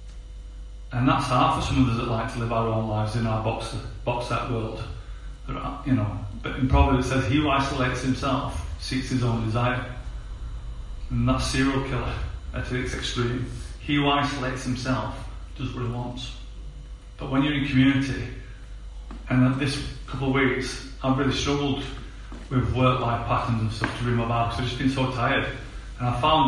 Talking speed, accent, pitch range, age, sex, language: 180 wpm, British, 115-130 Hz, 30-49, male, English